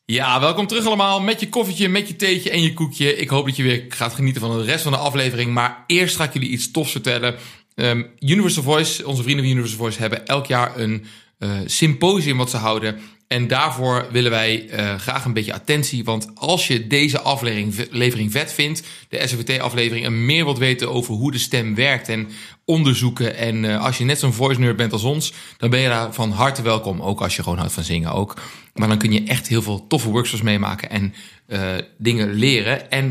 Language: Dutch